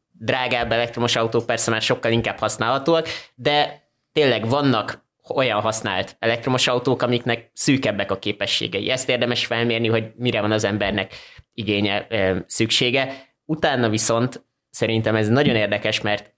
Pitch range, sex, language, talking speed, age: 105-120 Hz, male, Hungarian, 130 wpm, 20-39